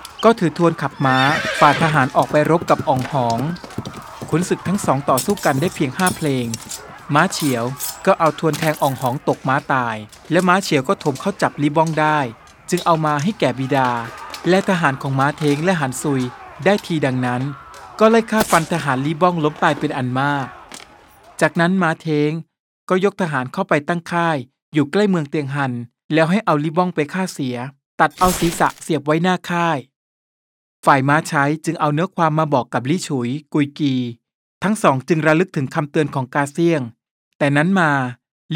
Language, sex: Thai, male